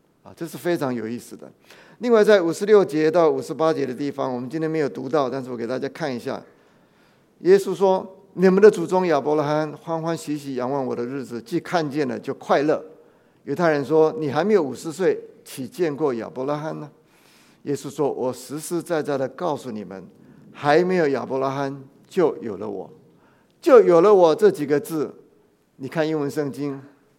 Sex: male